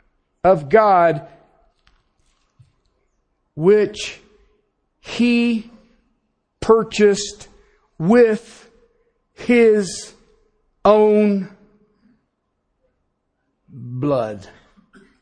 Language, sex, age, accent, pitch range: English, male, 50-69, American, 170-240 Hz